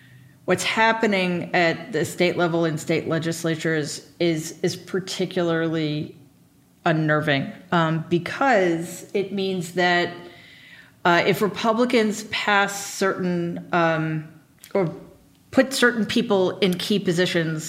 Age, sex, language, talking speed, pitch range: 40-59, female, English, 105 wpm, 160-185 Hz